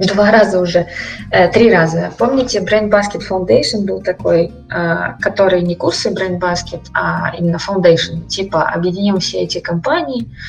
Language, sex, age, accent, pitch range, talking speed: Ukrainian, female, 20-39, native, 170-210 Hz, 135 wpm